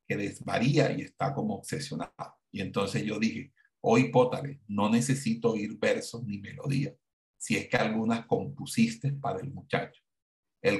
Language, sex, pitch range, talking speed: Spanish, male, 115-145 Hz, 155 wpm